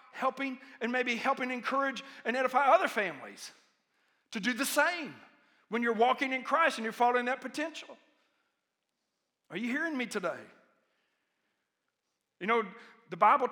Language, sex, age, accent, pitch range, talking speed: English, male, 50-69, American, 240-285 Hz, 140 wpm